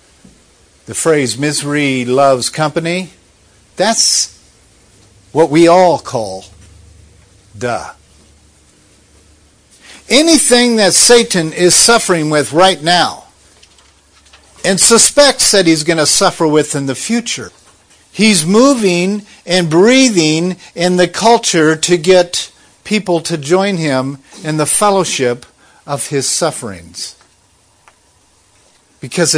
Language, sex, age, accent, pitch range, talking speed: English, male, 50-69, American, 115-190 Hz, 100 wpm